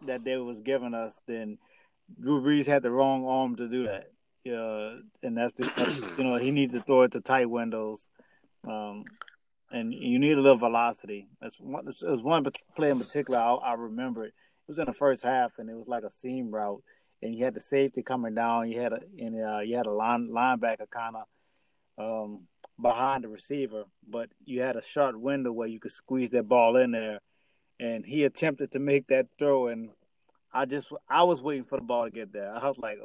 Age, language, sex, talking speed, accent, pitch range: 30-49, English, male, 220 wpm, American, 110-130 Hz